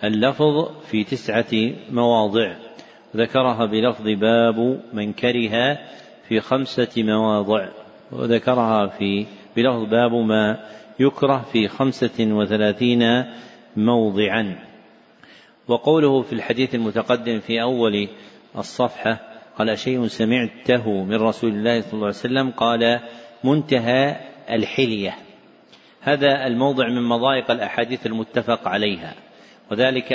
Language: Arabic